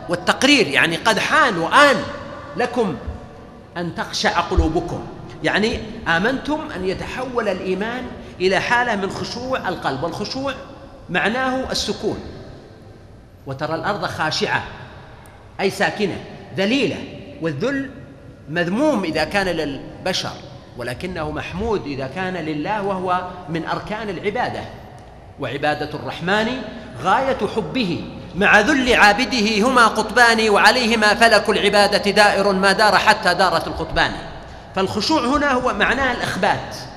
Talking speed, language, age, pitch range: 105 wpm, Arabic, 40-59, 150-215 Hz